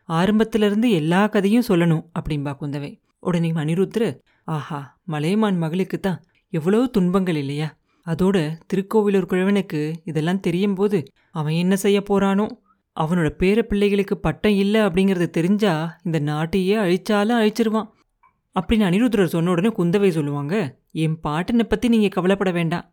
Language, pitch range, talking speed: Tamil, 170-215 Hz, 125 wpm